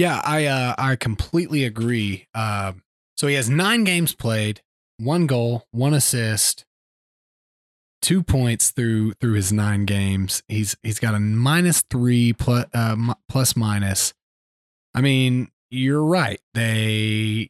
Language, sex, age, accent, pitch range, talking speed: English, male, 20-39, American, 110-140 Hz, 135 wpm